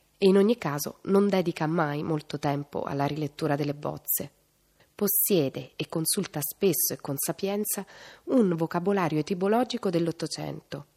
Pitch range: 155-200 Hz